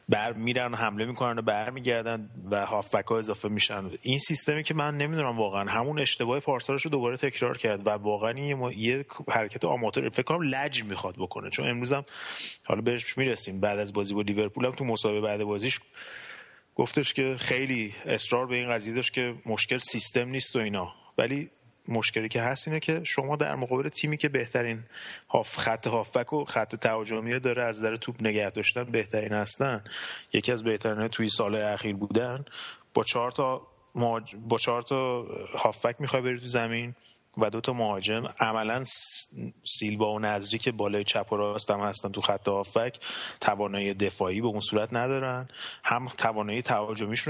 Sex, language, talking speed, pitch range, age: male, Persian, 170 wpm, 105-130 Hz, 30-49